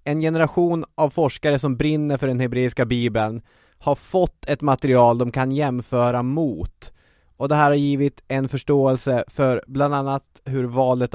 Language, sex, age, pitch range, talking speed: English, male, 20-39, 110-140 Hz, 160 wpm